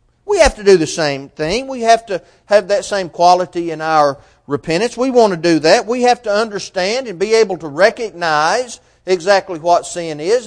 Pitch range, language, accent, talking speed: 150-230 Hz, English, American, 200 wpm